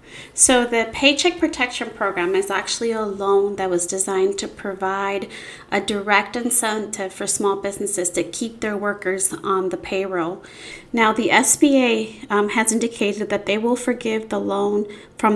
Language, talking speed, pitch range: English, 155 wpm, 200-235 Hz